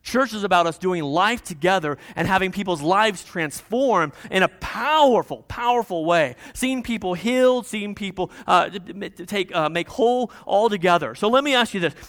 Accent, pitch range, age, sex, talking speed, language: American, 155-205 Hz, 40-59, male, 190 wpm, English